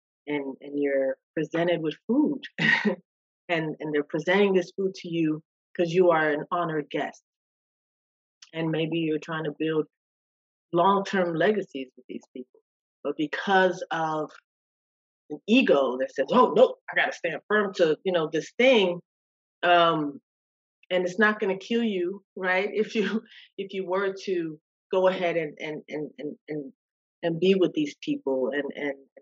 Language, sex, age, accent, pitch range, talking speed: English, female, 30-49, American, 150-180 Hz, 160 wpm